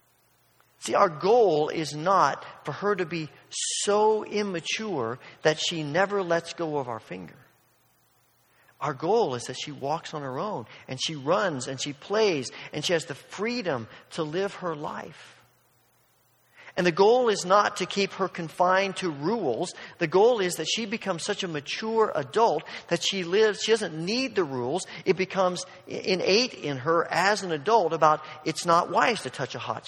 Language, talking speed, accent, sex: English, 175 wpm, American, male